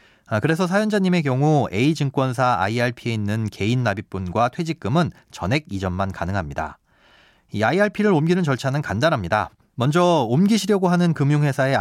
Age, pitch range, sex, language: 40-59, 110-165 Hz, male, Korean